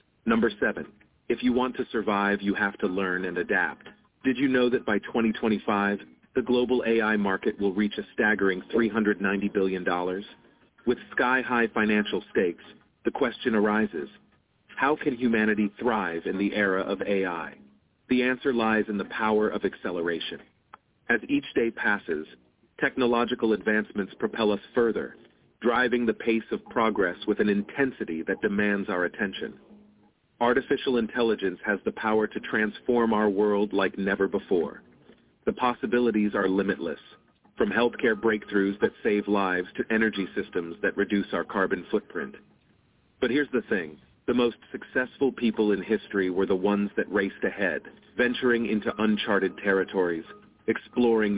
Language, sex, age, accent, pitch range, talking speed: English, male, 40-59, American, 100-120 Hz, 145 wpm